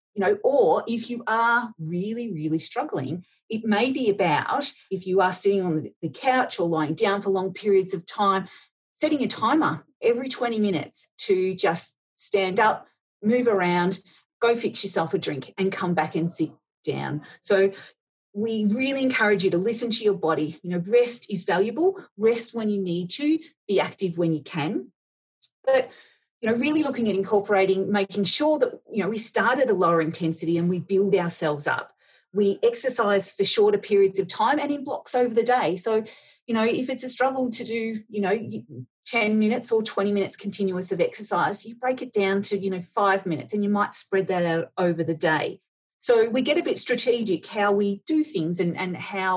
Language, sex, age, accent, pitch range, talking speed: English, female, 40-59, Australian, 185-235 Hz, 195 wpm